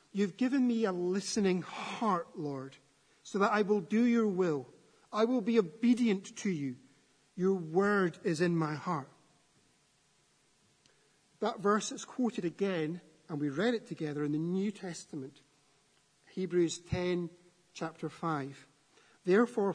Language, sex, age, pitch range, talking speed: English, male, 50-69, 155-205 Hz, 135 wpm